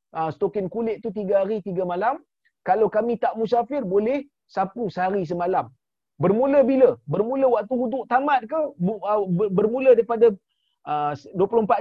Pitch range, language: 180-235 Hz, Malayalam